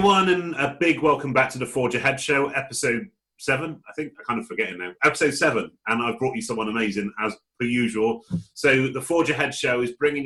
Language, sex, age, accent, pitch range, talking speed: English, male, 30-49, British, 110-140 Hz, 220 wpm